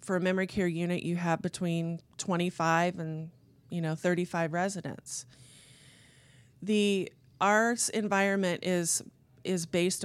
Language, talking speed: English, 120 wpm